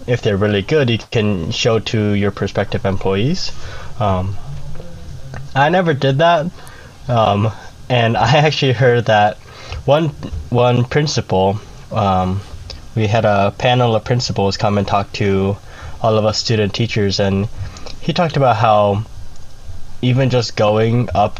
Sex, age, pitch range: male, 20-39, 100-120 Hz